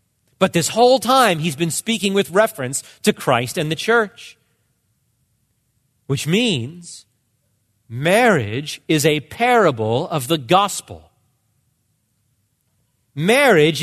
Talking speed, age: 105 wpm, 40-59